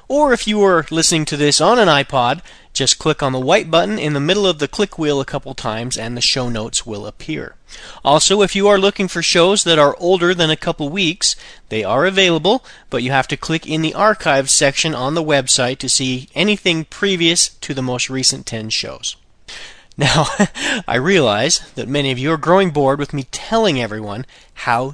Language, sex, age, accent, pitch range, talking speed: Italian, male, 40-59, American, 120-160 Hz, 205 wpm